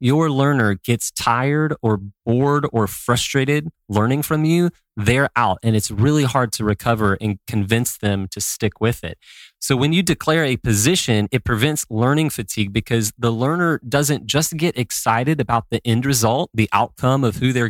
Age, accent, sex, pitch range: 30-49, American, male, 105-140 Hz